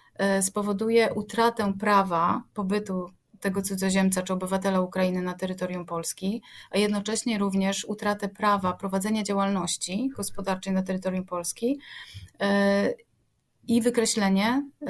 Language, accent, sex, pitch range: Polish, native, female, 185-215 Hz